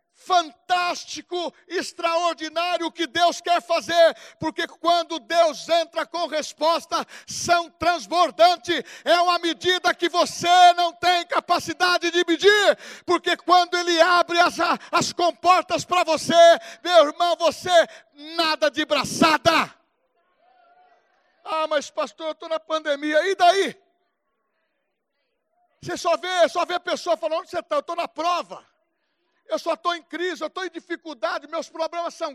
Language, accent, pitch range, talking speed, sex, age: Portuguese, Brazilian, 290-345 Hz, 140 wpm, male, 60-79